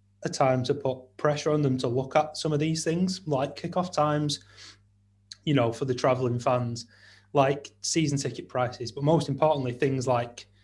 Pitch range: 110-135 Hz